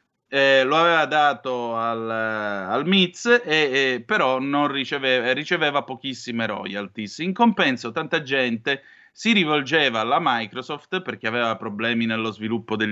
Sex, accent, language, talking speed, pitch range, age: male, native, Italian, 135 wpm, 115-165 Hz, 30-49